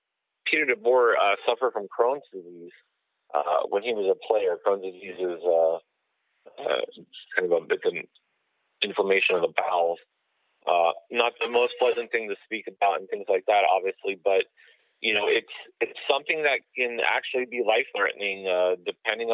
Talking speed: 170 wpm